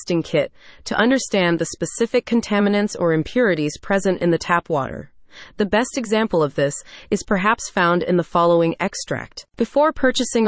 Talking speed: 155 wpm